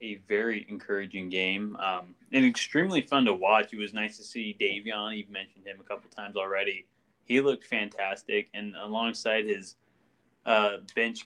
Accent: American